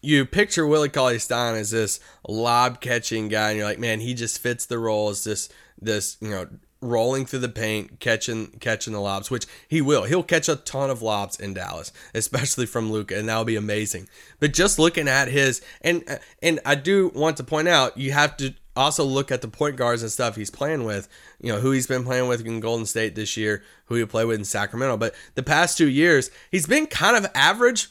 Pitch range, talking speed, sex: 120-170 Hz, 225 wpm, male